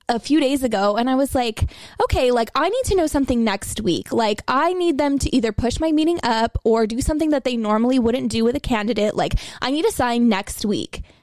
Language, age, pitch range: English, 20-39, 220-280 Hz